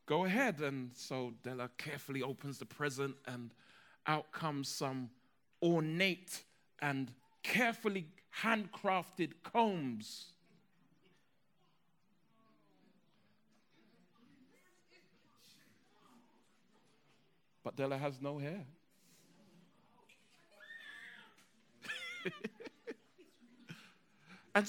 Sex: male